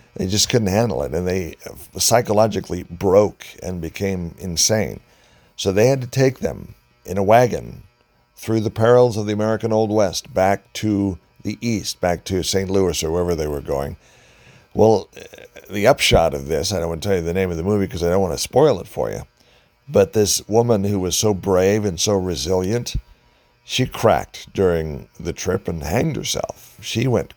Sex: male